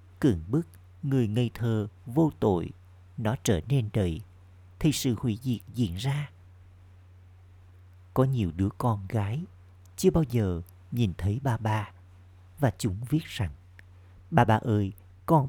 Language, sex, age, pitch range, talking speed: Vietnamese, male, 50-69, 90-125 Hz, 145 wpm